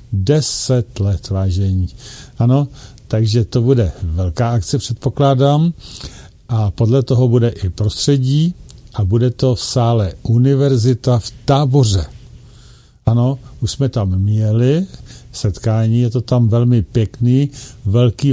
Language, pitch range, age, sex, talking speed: Czech, 105-125 Hz, 50-69, male, 120 wpm